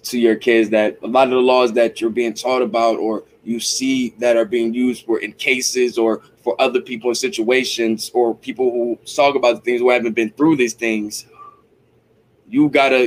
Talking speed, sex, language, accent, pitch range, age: 205 wpm, male, English, American, 115-130 Hz, 10-29